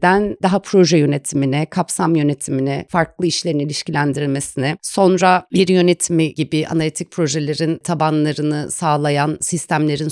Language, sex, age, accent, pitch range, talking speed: Turkish, female, 30-49, native, 145-185 Hz, 100 wpm